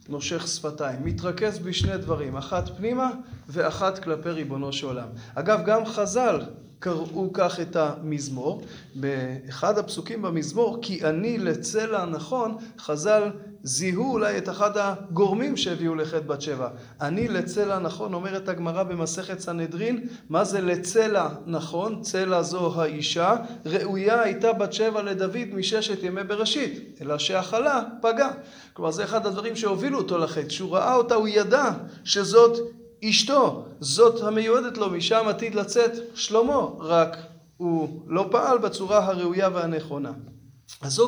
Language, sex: Hebrew, male